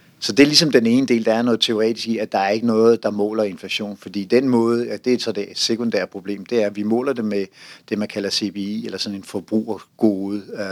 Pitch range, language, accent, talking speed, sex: 105-125 Hz, Danish, native, 260 wpm, male